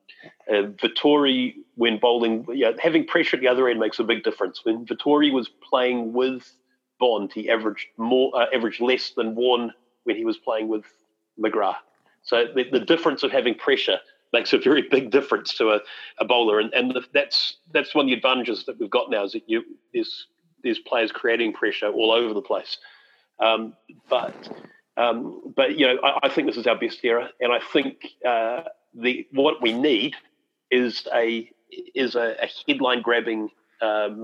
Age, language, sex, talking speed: 40-59, English, male, 185 wpm